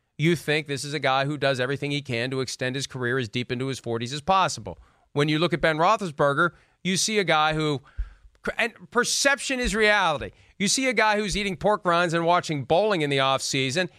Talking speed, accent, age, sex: 220 wpm, American, 40-59, male